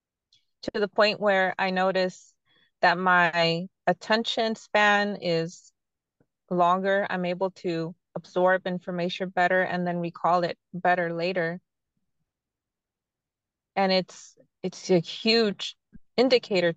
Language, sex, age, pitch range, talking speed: English, female, 20-39, 165-190 Hz, 105 wpm